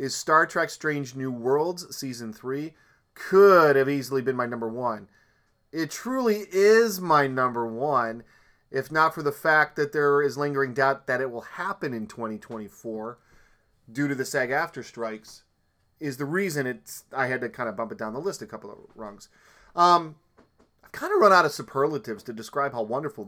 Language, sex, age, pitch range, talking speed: English, male, 30-49, 125-160 Hz, 190 wpm